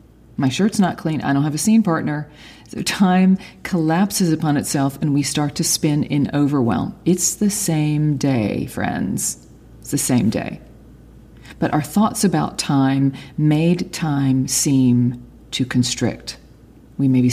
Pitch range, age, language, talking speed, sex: 135-180 Hz, 40-59, English, 150 wpm, female